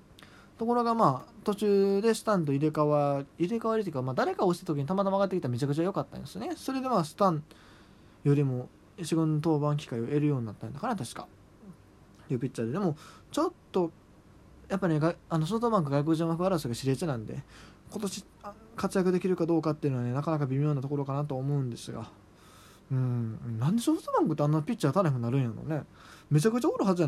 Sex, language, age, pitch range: male, Japanese, 20-39, 130-180 Hz